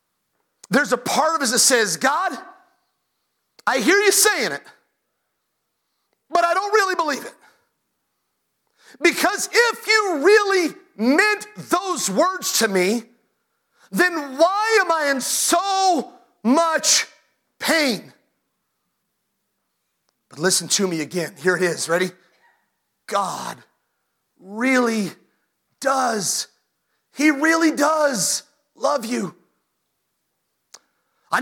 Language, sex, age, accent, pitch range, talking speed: English, male, 40-59, American, 255-370 Hz, 105 wpm